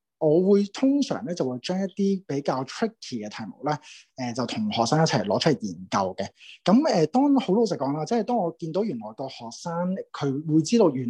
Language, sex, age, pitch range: Chinese, male, 20-39, 135-220 Hz